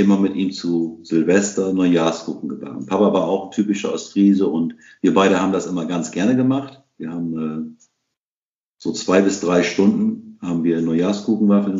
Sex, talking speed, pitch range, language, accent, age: male, 170 wpm, 95-125 Hz, German, German, 50-69